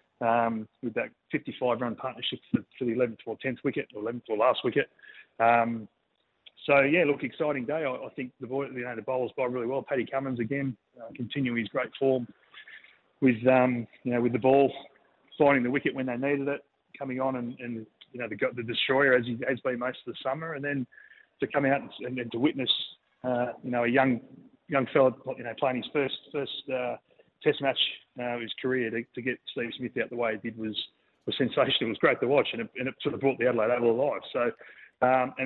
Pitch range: 120-135 Hz